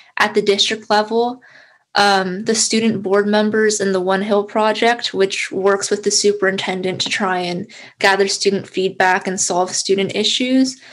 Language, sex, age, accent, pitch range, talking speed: English, female, 10-29, American, 190-225 Hz, 160 wpm